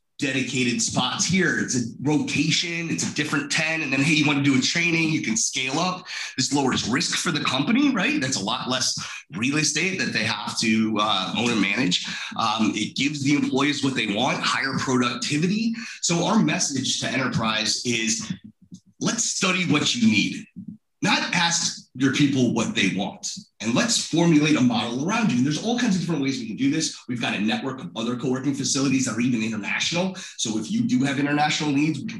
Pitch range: 125-185 Hz